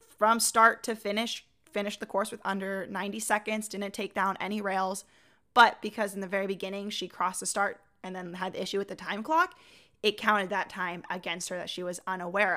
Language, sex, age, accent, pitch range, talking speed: English, female, 20-39, American, 195-230 Hz, 215 wpm